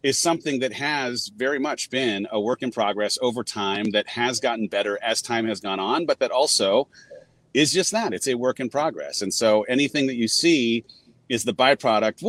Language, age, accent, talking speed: English, 30-49, American, 205 wpm